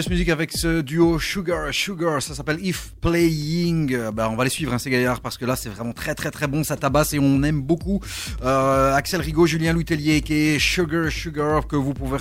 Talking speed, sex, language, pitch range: 220 wpm, male, French, 125-165 Hz